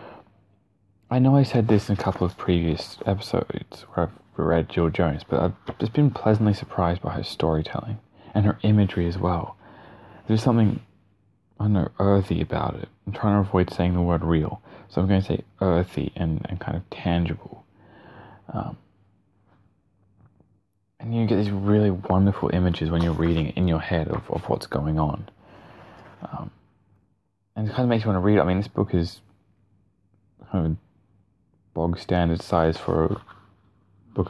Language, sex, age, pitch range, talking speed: English, male, 20-39, 85-105 Hz, 170 wpm